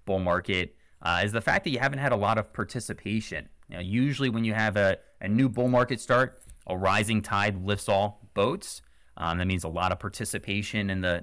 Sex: male